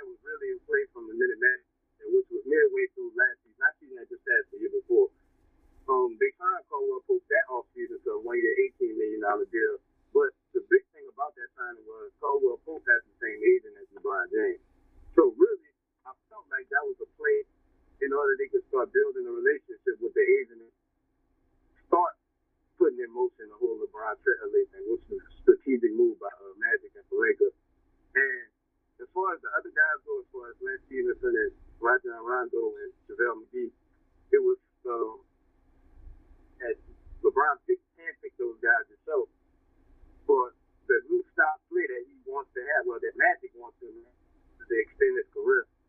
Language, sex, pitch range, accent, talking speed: English, male, 375-415 Hz, American, 185 wpm